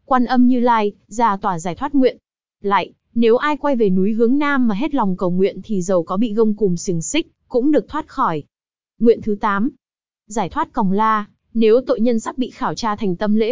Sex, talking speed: female, 225 wpm